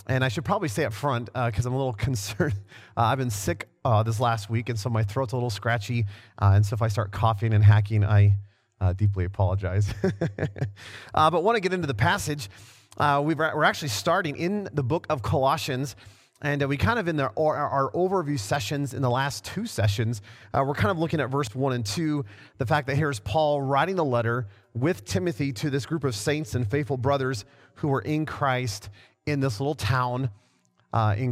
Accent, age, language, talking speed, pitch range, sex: American, 30-49, English, 215 wpm, 110-145 Hz, male